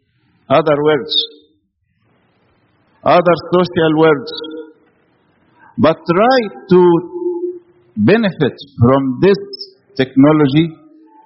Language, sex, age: English, male, 60-79